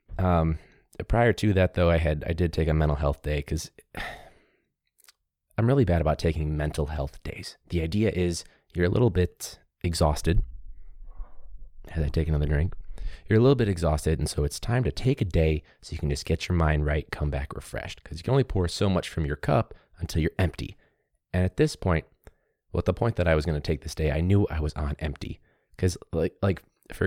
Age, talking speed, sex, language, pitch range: 30-49, 220 wpm, male, English, 75-95 Hz